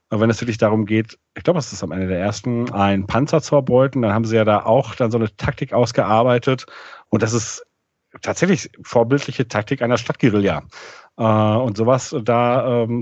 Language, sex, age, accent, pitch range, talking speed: German, male, 40-59, German, 110-135 Hz, 190 wpm